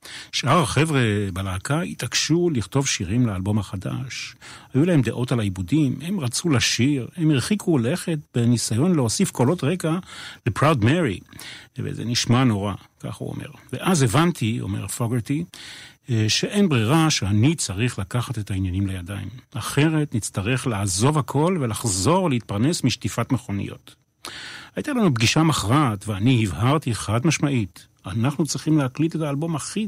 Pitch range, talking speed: 110-155 Hz, 130 wpm